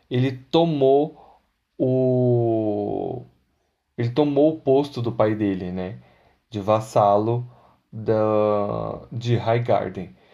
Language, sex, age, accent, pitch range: Portuguese, male, 20-39, Brazilian, 110-140 Hz